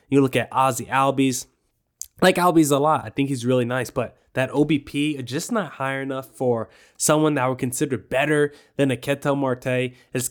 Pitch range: 125-155 Hz